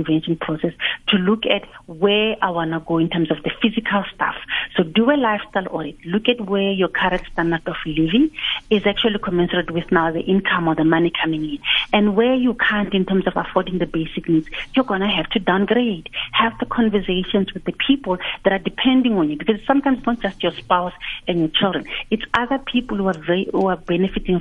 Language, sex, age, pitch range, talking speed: English, female, 40-59, 170-205 Hz, 215 wpm